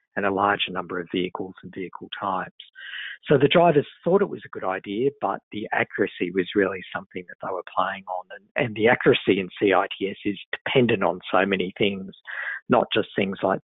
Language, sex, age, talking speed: English, male, 50-69, 200 wpm